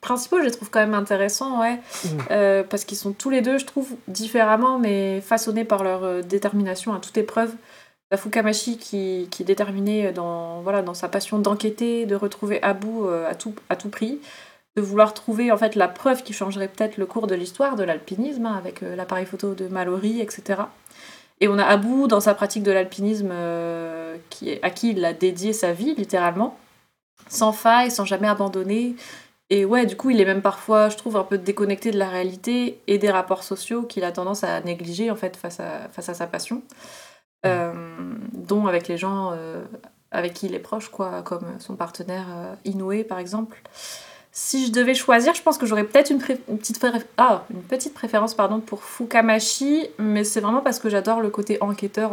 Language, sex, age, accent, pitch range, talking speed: French, female, 20-39, French, 185-225 Hz, 200 wpm